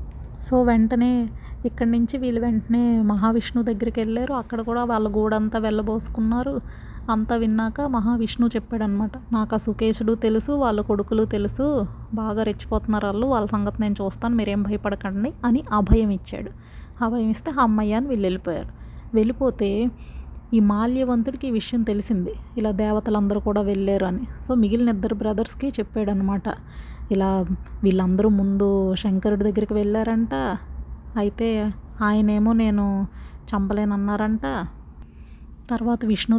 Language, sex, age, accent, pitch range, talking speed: Telugu, female, 30-49, native, 210-235 Hz, 115 wpm